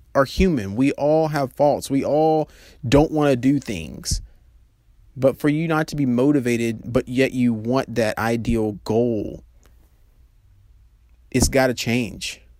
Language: English